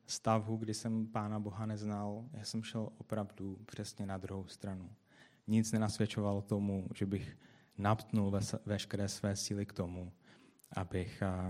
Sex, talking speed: male, 130 wpm